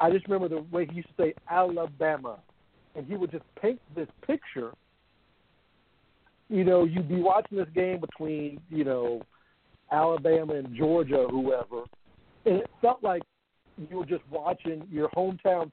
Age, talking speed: 50-69, 155 wpm